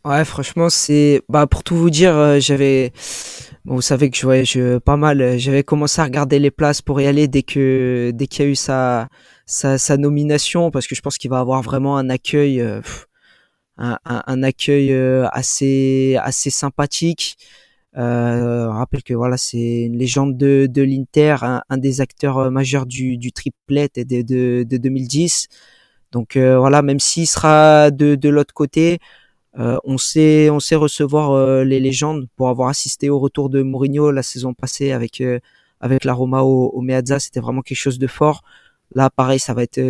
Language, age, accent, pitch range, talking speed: French, 20-39, French, 130-145 Hz, 195 wpm